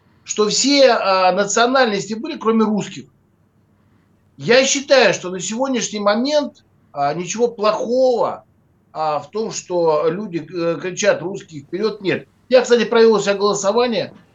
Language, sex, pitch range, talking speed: Russian, male, 170-230 Hz, 125 wpm